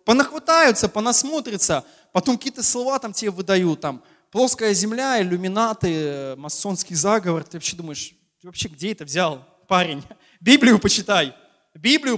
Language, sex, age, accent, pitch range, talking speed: Russian, male, 20-39, native, 160-220 Hz, 130 wpm